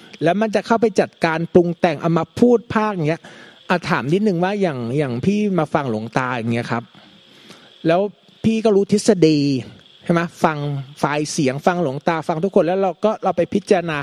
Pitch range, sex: 165-215 Hz, male